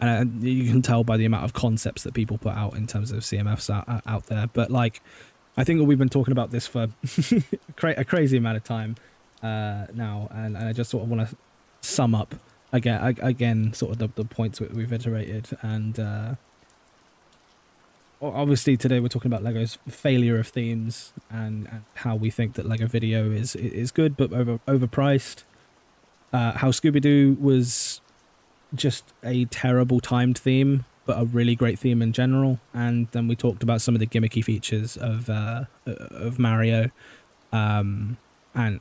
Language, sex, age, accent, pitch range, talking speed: English, male, 10-29, British, 110-125 Hz, 170 wpm